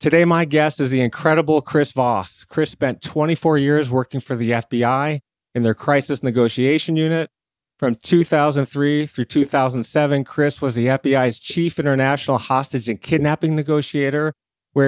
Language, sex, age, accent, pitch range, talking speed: English, male, 30-49, American, 125-150 Hz, 145 wpm